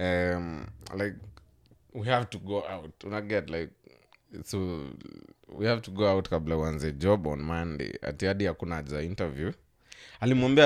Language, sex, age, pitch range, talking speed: Swahili, male, 20-39, 90-115 Hz, 145 wpm